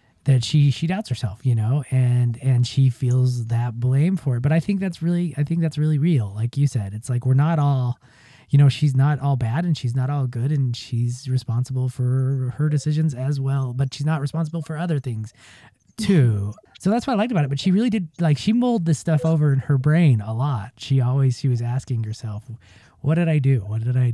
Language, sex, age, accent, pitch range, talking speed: English, male, 20-39, American, 120-155 Hz, 235 wpm